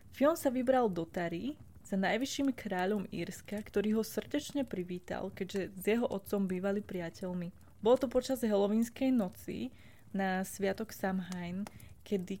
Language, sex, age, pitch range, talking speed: Czech, female, 20-39, 185-210 Hz, 135 wpm